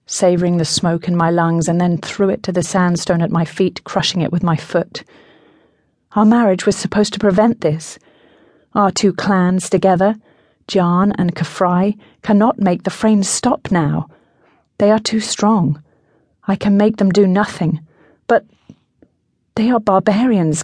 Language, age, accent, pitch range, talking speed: English, 30-49, British, 165-200 Hz, 160 wpm